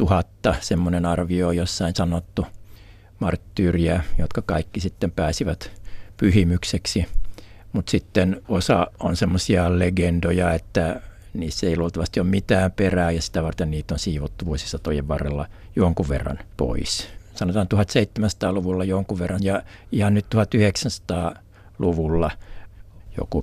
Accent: native